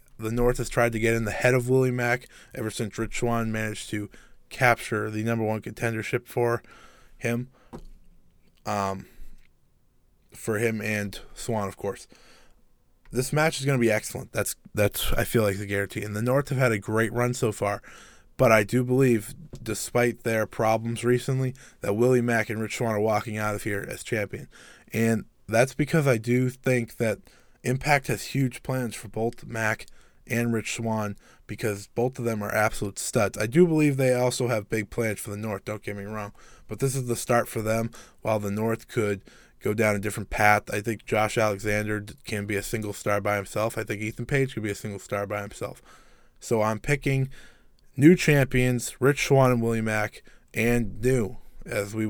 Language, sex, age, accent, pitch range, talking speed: English, male, 20-39, American, 105-125 Hz, 195 wpm